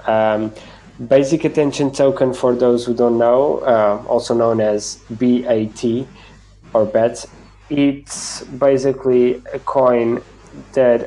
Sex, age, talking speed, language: male, 20-39, 115 wpm, English